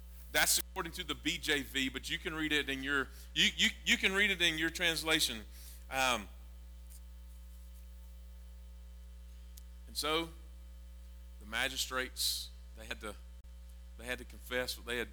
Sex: male